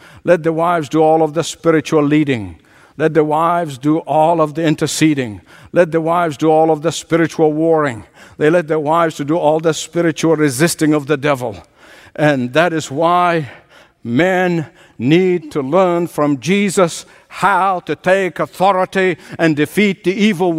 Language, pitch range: English, 160-220 Hz